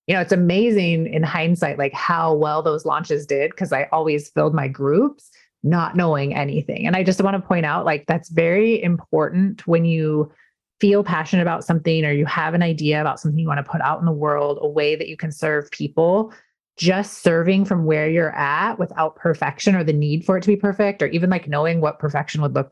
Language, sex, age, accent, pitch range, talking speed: English, female, 30-49, American, 155-185 Hz, 220 wpm